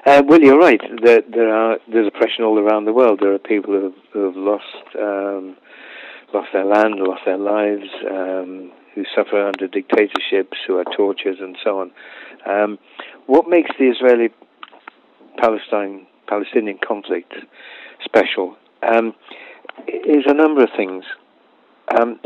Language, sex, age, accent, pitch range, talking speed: English, male, 50-69, British, 100-115 Hz, 145 wpm